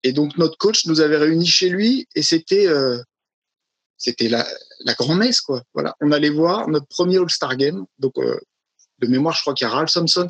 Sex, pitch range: male, 130-175 Hz